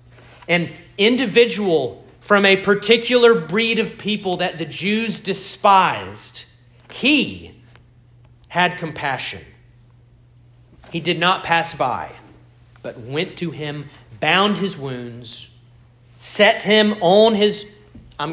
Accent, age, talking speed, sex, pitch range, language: American, 40-59, 105 wpm, male, 120-175 Hz, English